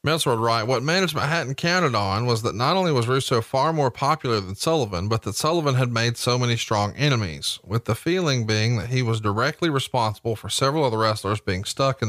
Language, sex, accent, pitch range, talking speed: English, male, American, 115-145 Hz, 225 wpm